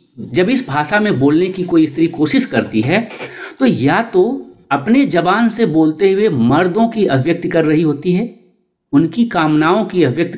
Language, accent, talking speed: Hindi, native, 175 wpm